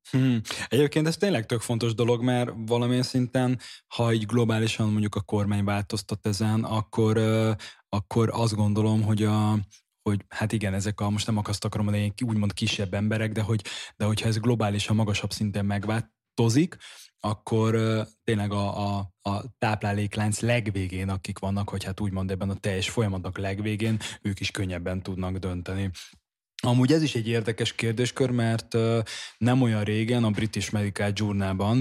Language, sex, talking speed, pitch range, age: Hungarian, male, 155 wpm, 105-115 Hz, 20-39